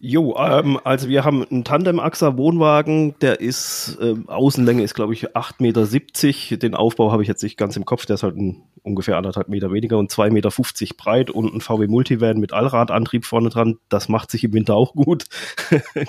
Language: German